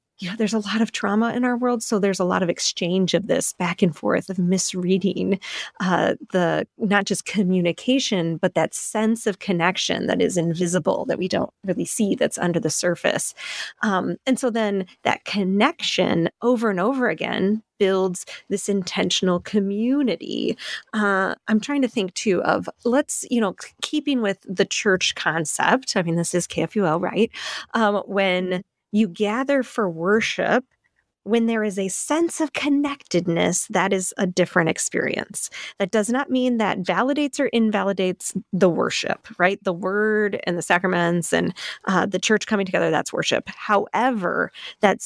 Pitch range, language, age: 185-225 Hz, English, 30-49